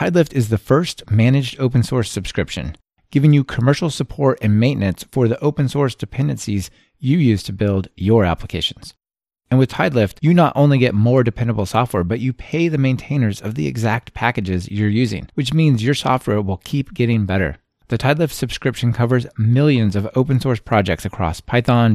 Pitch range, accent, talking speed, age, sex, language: 105-135 Hz, American, 180 wpm, 30-49, male, English